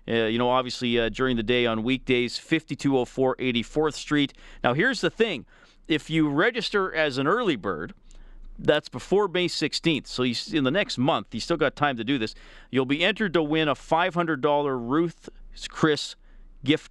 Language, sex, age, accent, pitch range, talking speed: English, male, 40-59, American, 115-155 Hz, 180 wpm